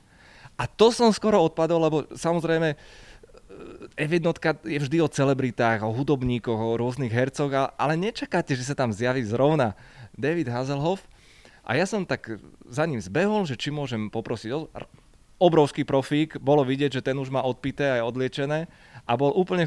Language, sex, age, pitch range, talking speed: Slovak, male, 20-39, 130-165 Hz, 155 wpm